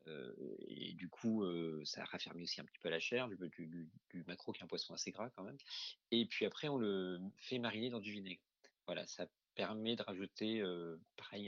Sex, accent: male, French